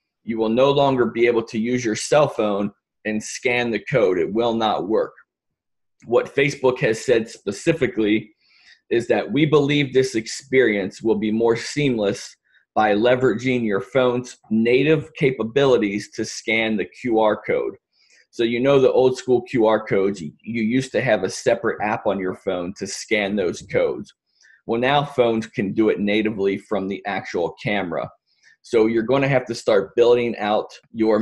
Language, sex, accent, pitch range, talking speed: English, male, American, 105-130 Hz, 165 wpm